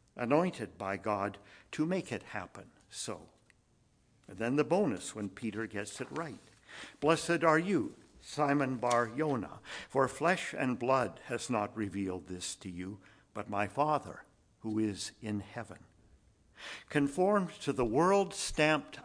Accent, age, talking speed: American, 60-79, 140 wpm